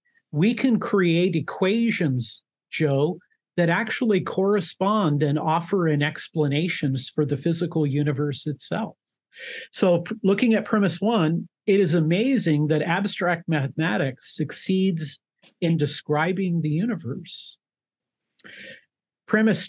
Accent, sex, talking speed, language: American, male, 105 wpm, English